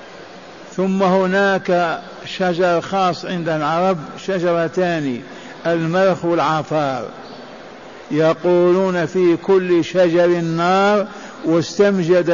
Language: Arabic